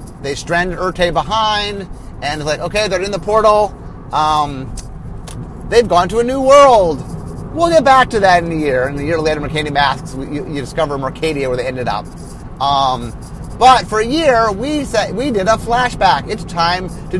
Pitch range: 145-215 Hz